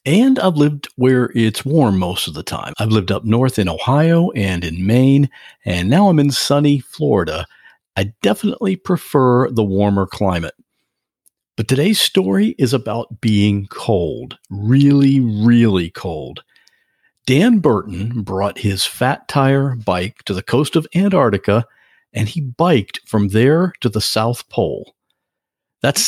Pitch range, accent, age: 105-150 Hz, American, 50-69